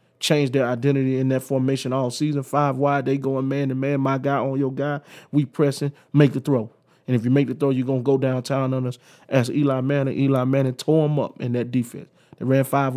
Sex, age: male, 20-39